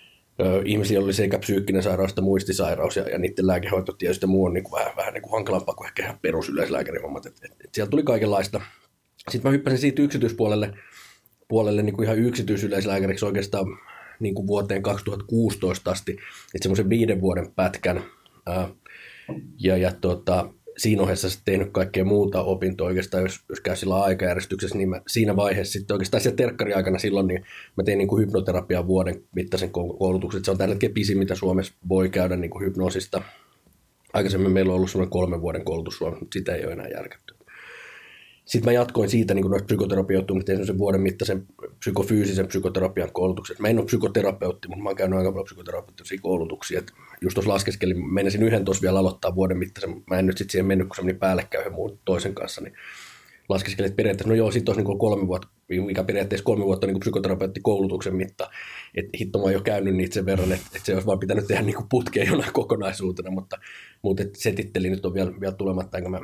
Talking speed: 180 wpm